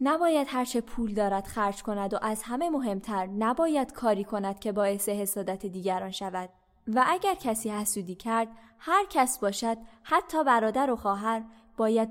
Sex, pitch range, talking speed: female, 215-280 Hz, 155 wpm